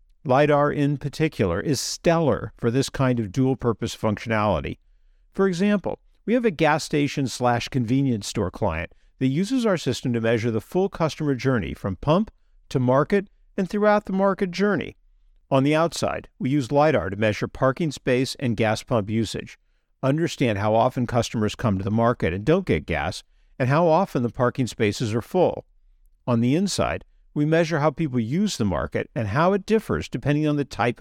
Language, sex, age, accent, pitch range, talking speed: English, male, 50-69, American, 110-155 Hz, 180 wpm